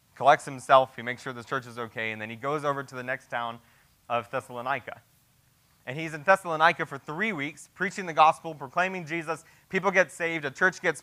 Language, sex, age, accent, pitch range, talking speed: English, male, 20-39, American, 140-175 Hz, 205 wpm